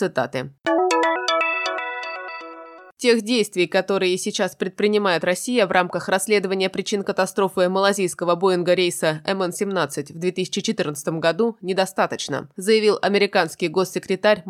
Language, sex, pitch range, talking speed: Russian, female, 165-215 Hz, 95 wpm